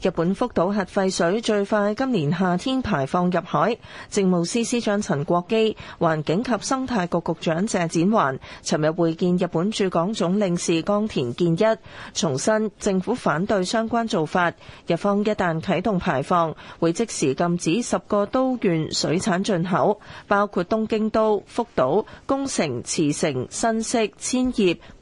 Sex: female